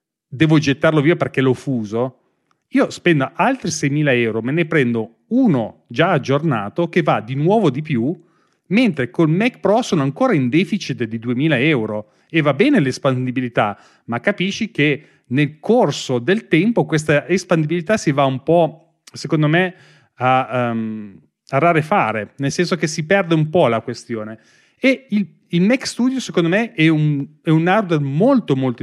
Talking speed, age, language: 165 wpm, 30-49, Italian